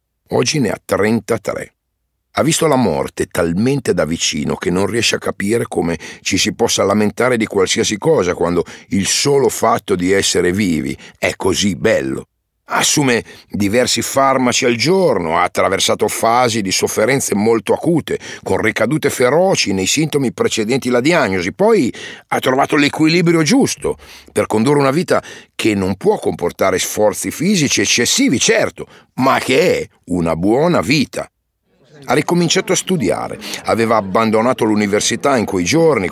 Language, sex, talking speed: Italian, male, 145 wpm